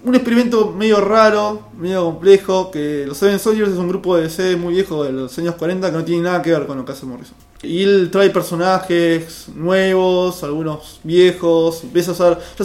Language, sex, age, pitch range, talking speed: Spanish, male, 20-39, 165-215 Hz, 205 wpm